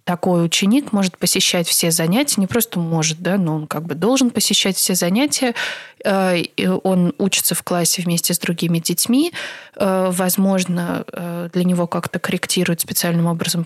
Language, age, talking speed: Russian, 20-39, 145 wpm